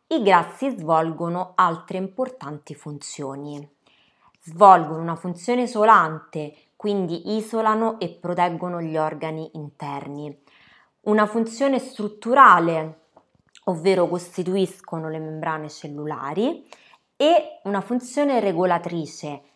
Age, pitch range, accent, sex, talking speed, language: 20-39, 155-215 Hz, native, female, 90 wpm, Italian